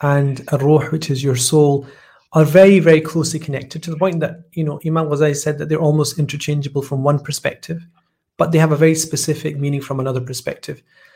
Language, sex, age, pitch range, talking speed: English, male, 30-49, 145-170 Hz, 205 wpm